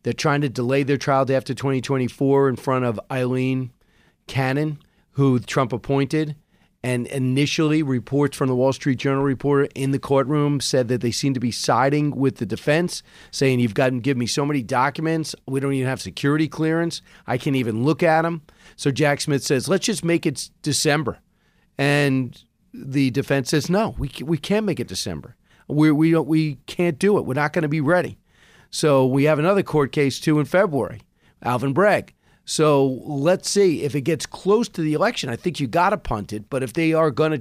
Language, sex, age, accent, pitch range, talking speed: English, male, 40-59, American, 130-160 Hz, 205 wpm